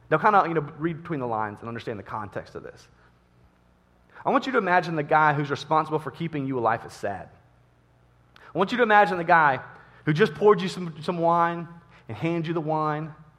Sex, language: male, English